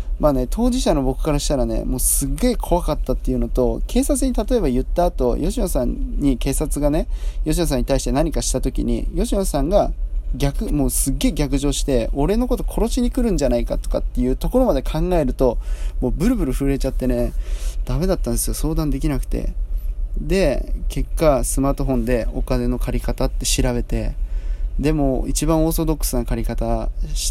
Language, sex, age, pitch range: Japanese, male, 20-39, 120-155 Hz